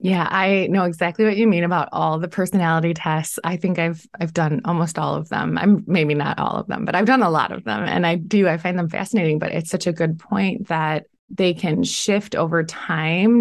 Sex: female